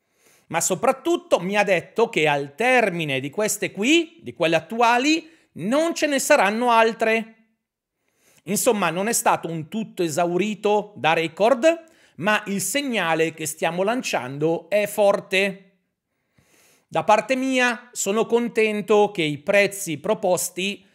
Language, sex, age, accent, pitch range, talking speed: Italian, male, 40-59, native, 170-225 Hz, 130 wpm